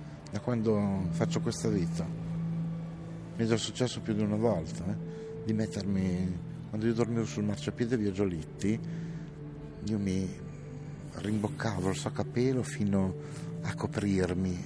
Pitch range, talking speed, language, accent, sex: 90-150 Hz, 125 wpm, Italian, native, male